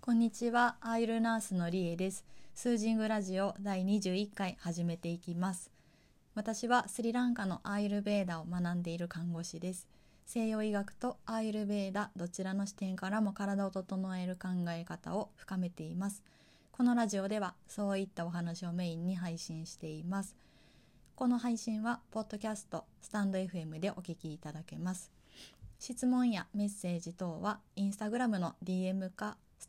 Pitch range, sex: 175-215 Hz, female